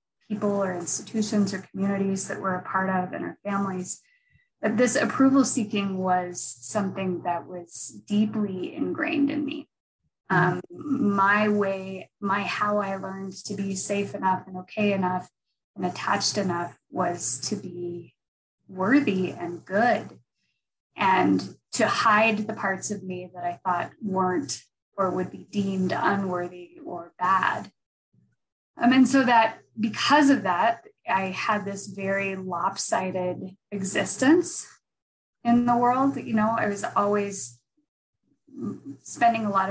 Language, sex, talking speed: English, female, 135 wpm